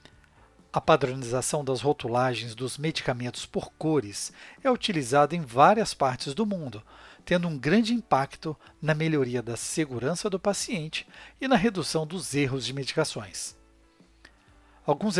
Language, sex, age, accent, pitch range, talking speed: Portuguese, male, 60-79, Brazilian, 130-175 Hz, 130 wpm